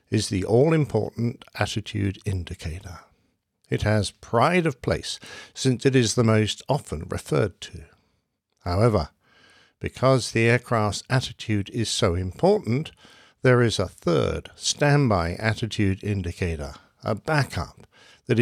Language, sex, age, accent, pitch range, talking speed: English, male, 60-79, British, 100-135 Hz, 115 wpm